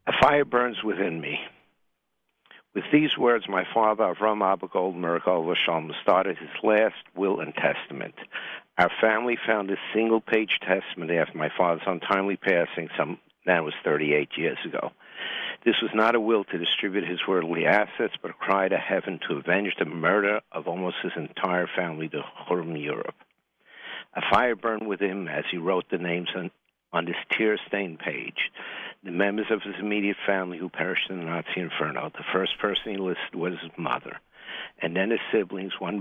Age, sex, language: 60-79, male, English